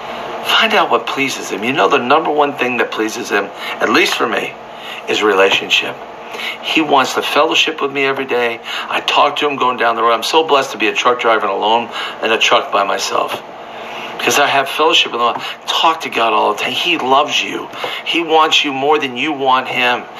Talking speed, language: 220 wpm, English